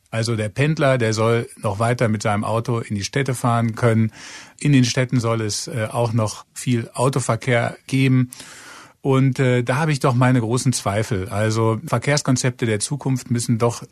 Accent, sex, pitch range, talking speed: German, male, 110-125 Hz, 170 wpm